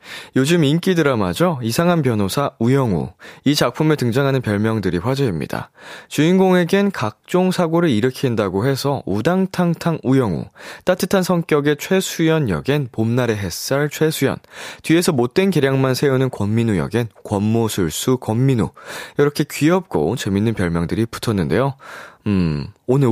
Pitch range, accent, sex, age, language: 105-155 Hz, native, male, 20-39, Korean